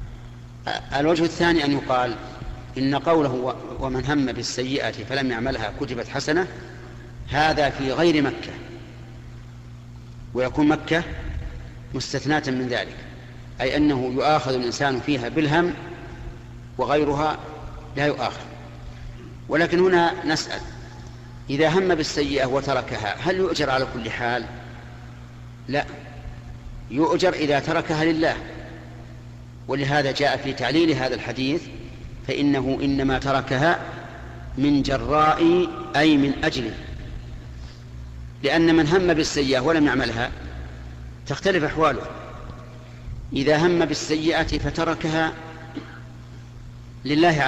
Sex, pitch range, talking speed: male, 120-150 Hz, 95 wpm